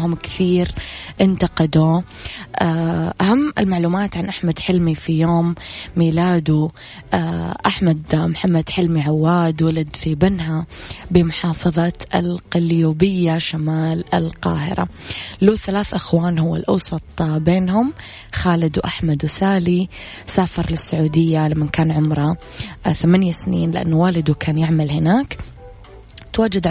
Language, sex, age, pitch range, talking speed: Arabic, female, 20-39, 155-175 Hz, 100 wpm